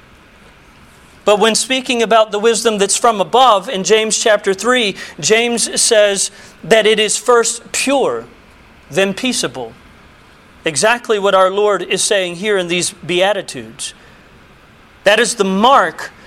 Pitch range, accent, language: 215-280 Hz, American, English